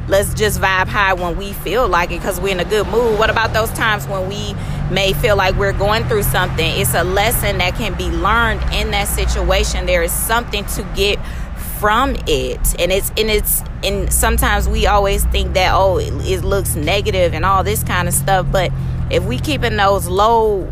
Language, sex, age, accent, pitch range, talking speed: English, female, 20-39, American, 190-230 Hz, 210 wpm